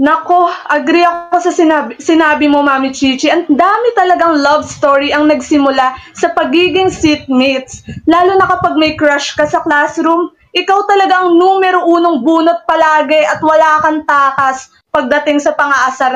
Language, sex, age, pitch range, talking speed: English, female, 20-39, 265-330 Hz, 150 wpm